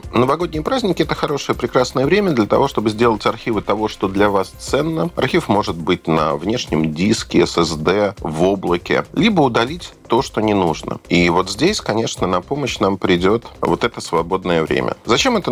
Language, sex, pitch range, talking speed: Russian, male, 85-115 Hz, 170 wpm